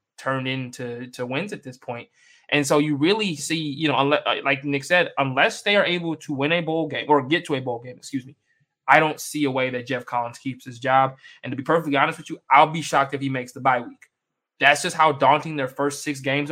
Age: 20-39